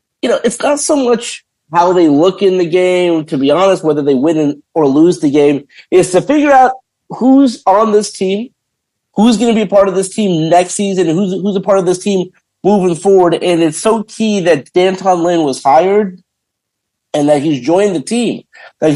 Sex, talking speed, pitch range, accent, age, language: male, 210 wpm, 150-195 Hz, American, 50-69, English